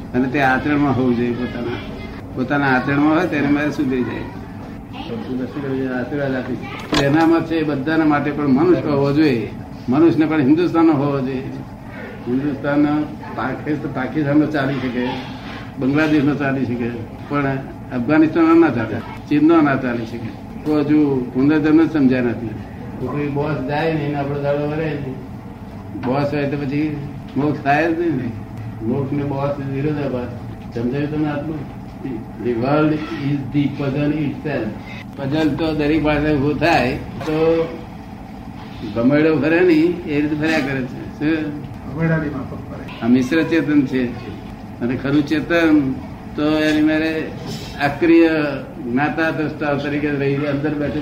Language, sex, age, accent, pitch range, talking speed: Gujarati, male, 60-79, native, 125-155 Hz, 80 wpm